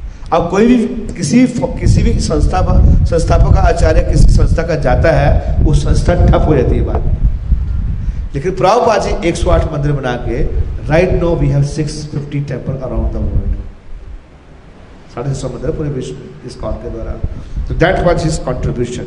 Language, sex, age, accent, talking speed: Hindi, male, 40-59, native, 115 wpm